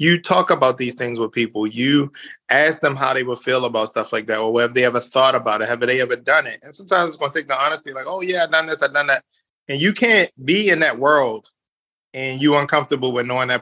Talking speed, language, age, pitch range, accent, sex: 270 wpm, English, 20-39, 120-160 Hz, American, male